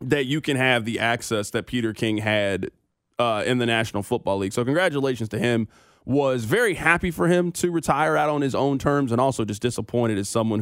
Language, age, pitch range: English, 20-39, 120-160 Hz